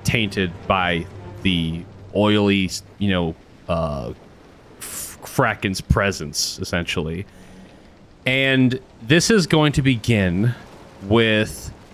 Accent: American